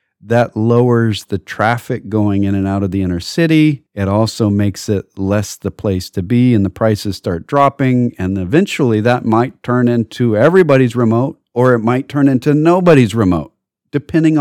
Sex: male